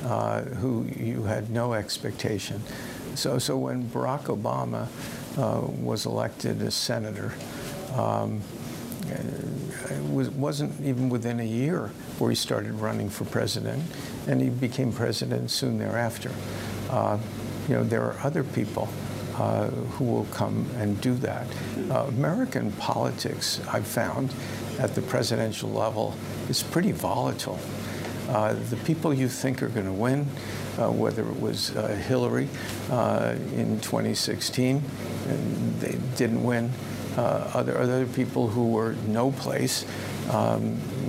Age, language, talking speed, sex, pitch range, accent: 60-79, English, 135 wpm, male, 110-130 Hz, American